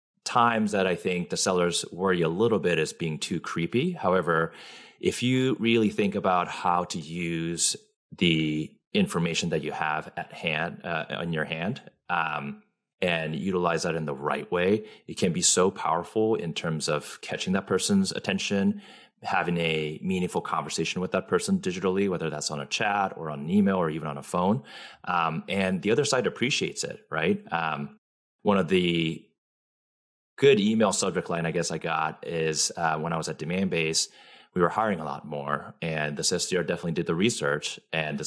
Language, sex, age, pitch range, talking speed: English, male, 30-49, 80-100 Hz, 185 wpm